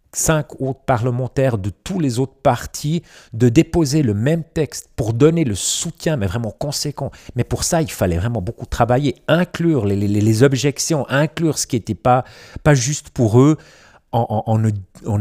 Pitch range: 105-135 Hz